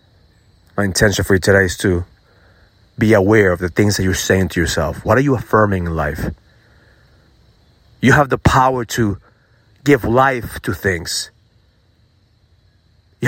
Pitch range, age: 90-120 Hz, 30-49